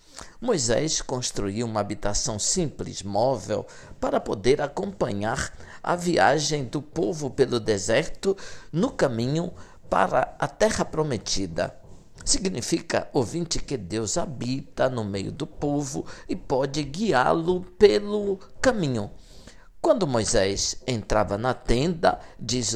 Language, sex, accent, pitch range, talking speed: Portuguese, male, Brazilian, 110-180 Hz, 110 wpm